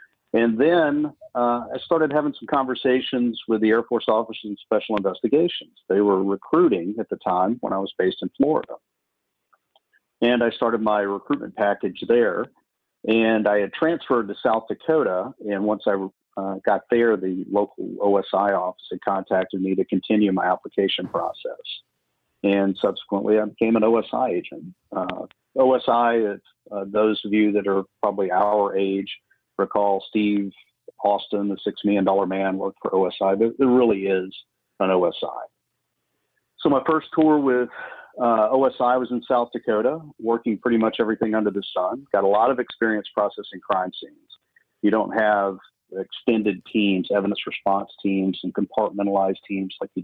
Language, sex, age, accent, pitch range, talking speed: English, male, 50-69, American, 100-120 Hz, 160 wpm